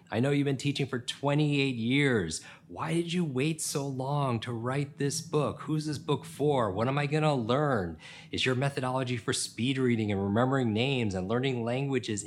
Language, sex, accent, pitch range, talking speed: English, male, American, 95-135 Hz, 195 wpm